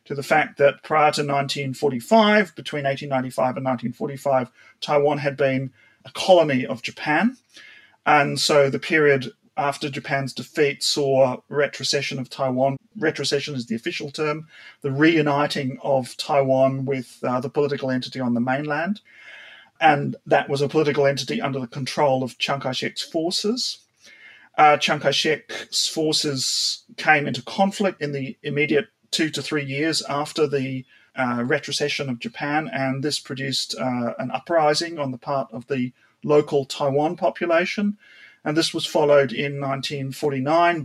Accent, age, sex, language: Australian, 30-49, male, English